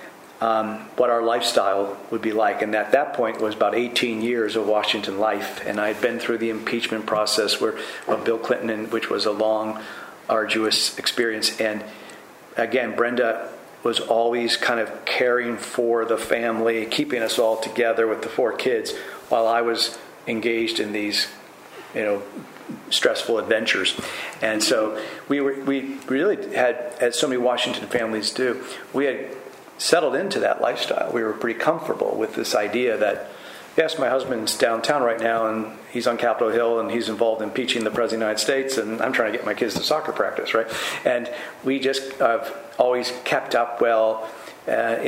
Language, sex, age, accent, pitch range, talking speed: English, male, 40-59, American, 110-120 Hz, 180 wpm